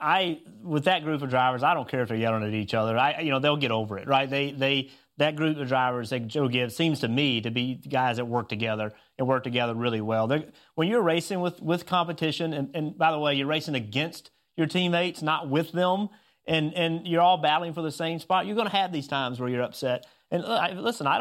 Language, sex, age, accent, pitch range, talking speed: English, male, 30-49, American, 135-175 Hz, 245 wpm